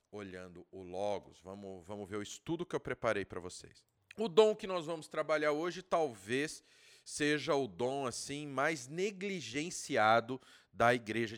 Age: 40-59